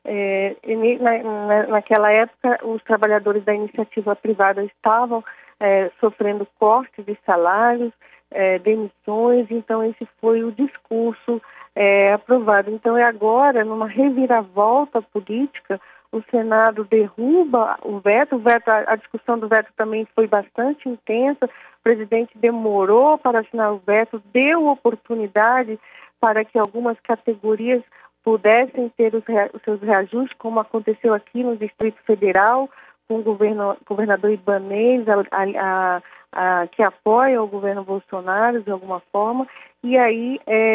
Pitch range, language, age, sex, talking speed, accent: 210-245 Hz, Portuguese, 40-59, female, 115 wpm, Brazilian